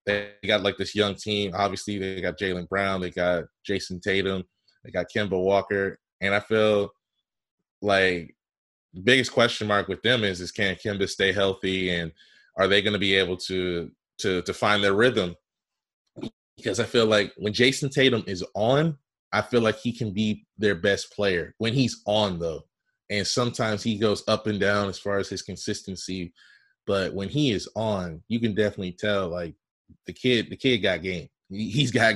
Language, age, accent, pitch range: English, 20-39, American, 95-110 Hz